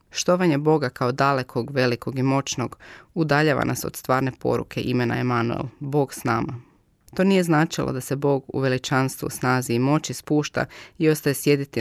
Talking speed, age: 165 wpm, 20-39